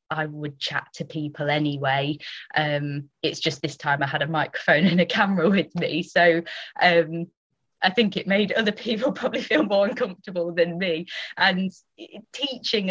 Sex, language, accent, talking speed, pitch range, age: female, English, British, 165 wpm, 155-200 Hz, 20-39